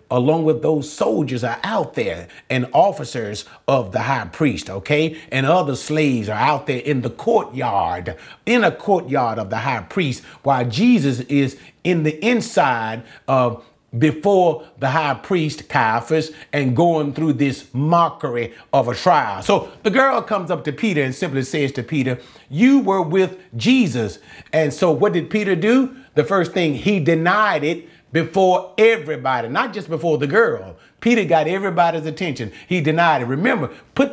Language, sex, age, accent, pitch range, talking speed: English, male, 40-59, American, 150-225 Hz, 165 wpm